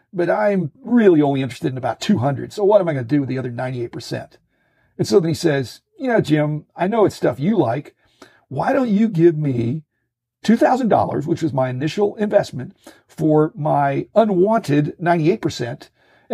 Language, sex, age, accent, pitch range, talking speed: English, male, 50-69, American, 130-170 Hz, 175 wpm